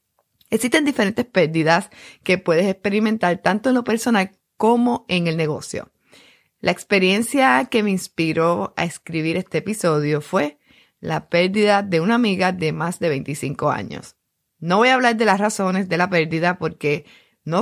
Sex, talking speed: female, 155 wpm